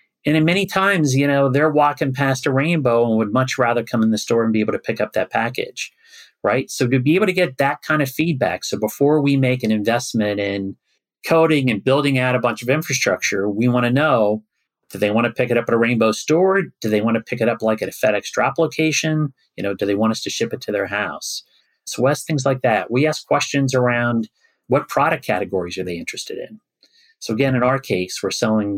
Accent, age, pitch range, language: American, 40-59, 110-145 Hz, English